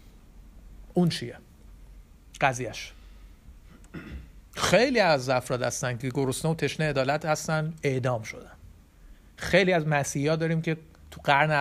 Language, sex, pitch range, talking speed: Persian, male, 125-170 Hz, 115 wpm